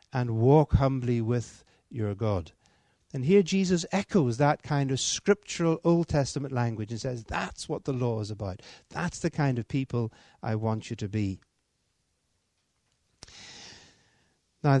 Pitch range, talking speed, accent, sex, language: 115-155 Hz, 145 wpm, British, male, Danish